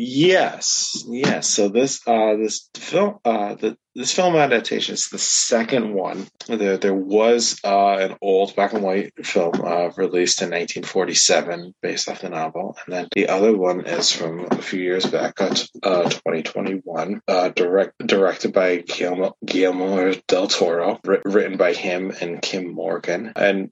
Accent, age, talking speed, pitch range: American, 20-39, 160 wpm, 90-105 Hz